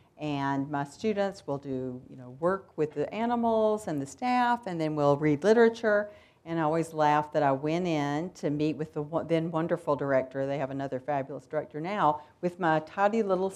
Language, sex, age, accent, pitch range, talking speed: English, female, 50-69, American, 145-180 Hz, 195 wpm